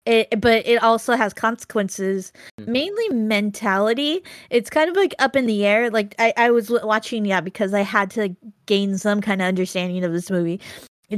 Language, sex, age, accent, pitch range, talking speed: English, female, 20-39, American, 180-215 Hz, 190 wpm